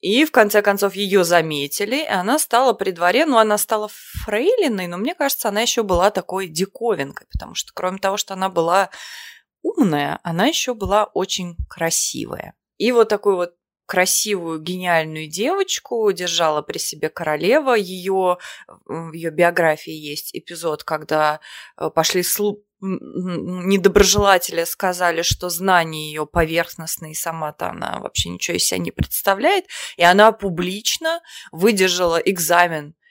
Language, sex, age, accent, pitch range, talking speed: Russian, female, 20-39, native, 160-205 Hz, 140 wpm